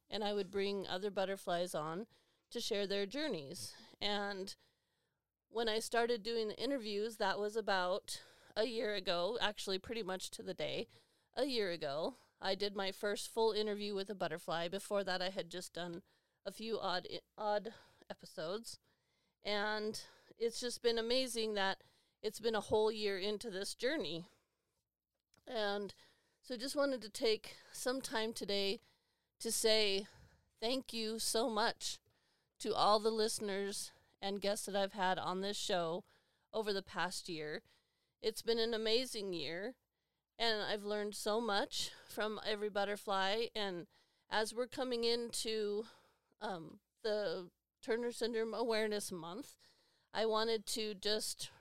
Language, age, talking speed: English, 40-59, 150 wpm